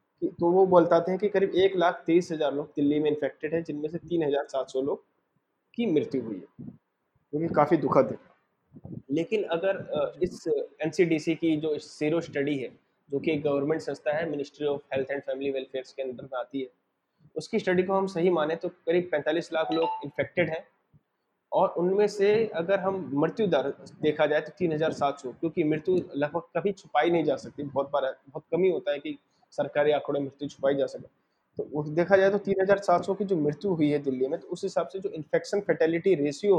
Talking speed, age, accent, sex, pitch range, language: 180 wpm, 20-39, native, male, 145-180 Hz, Hindi